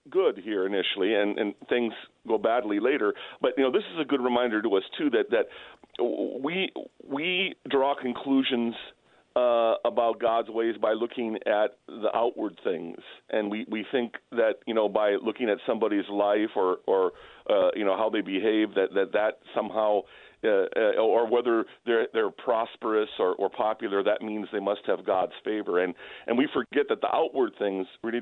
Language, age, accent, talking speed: English, 40-59, American, 185 wpm